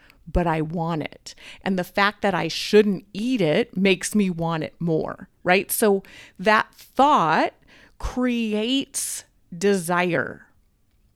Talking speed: 125 wpm